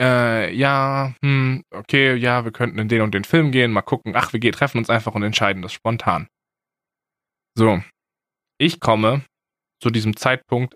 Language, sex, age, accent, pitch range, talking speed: German, male, 20-39, German, 110-145 Hz, 155 wpm